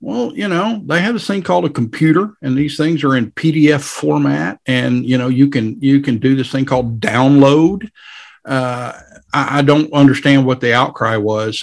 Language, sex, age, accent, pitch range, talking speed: English, male, 50-69, American, 125-150 Hz, 195 wpm